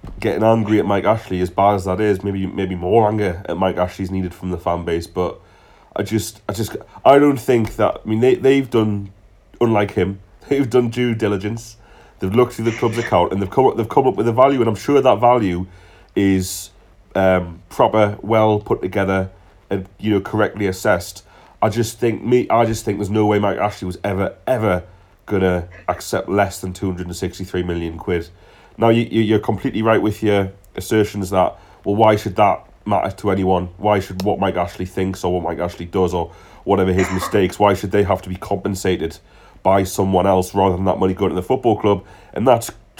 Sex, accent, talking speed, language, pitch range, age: male, British, 210 wpm, English, 95-110 Hz, 30-49